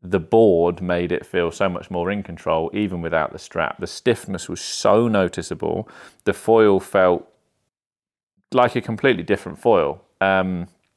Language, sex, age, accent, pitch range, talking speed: English, male, 30-49, British, 85-105 Hz, 155 wpm